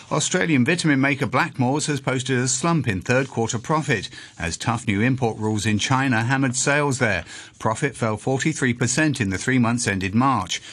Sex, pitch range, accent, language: male, 110-145 Hz, British, English